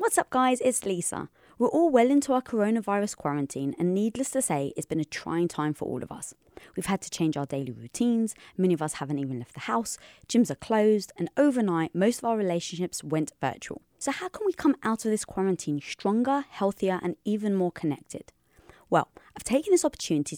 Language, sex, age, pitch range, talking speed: English, female, 20-39, 170-255 Hz, 210 wpm